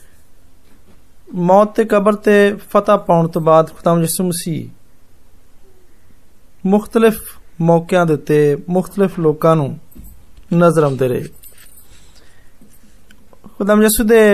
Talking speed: 55 wpm